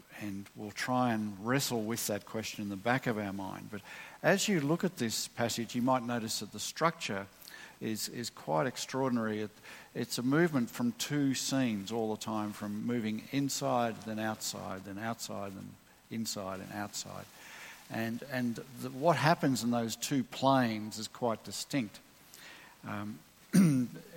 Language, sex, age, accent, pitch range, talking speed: English, male, 50-69, Australian, 110-130 Hz, 160 wpm